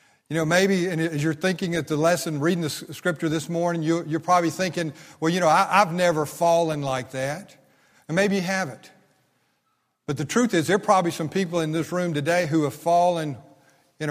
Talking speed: 195 wpm